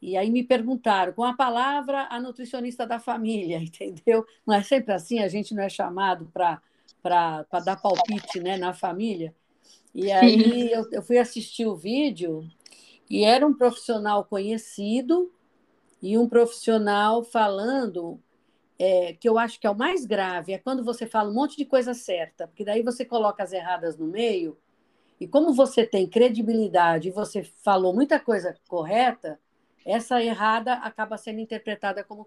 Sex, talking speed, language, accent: female, 160 wpm, Portuguese, Brazilian